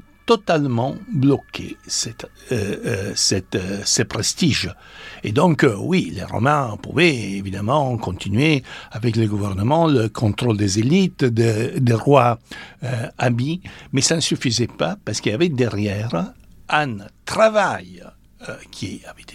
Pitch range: 110-170 Hz